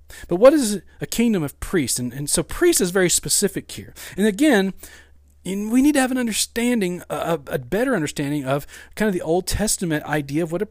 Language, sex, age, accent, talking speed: English, male, 40-59, American, 215 wpm